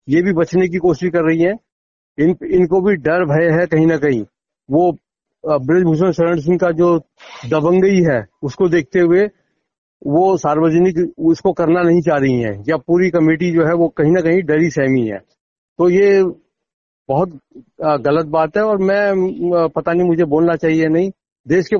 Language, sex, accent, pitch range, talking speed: Hindi, male, native, 155-190 Hz, 180 wpm